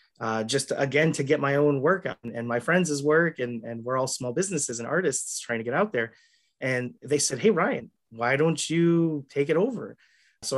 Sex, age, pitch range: male, 30-49, 125-150 Hz